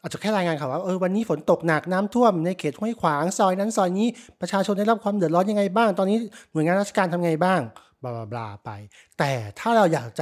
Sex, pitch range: male, 150-195 Hz